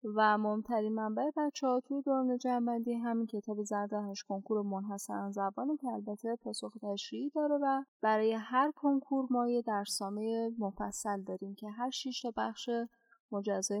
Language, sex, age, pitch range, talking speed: Persian, female, 10-29, 200-245 Hz, 145 wpm